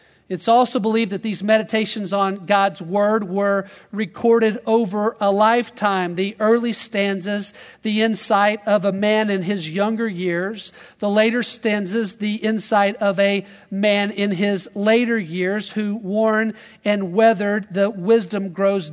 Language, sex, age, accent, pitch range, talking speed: English, male, 40-59, American, 170-210 Hz, 145 wpm